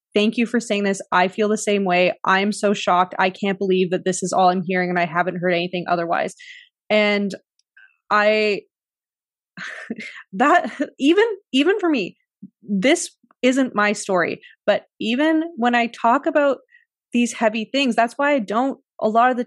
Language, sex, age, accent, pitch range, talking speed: English, female, 20-39, American, 190-250 Hz, 175 wpm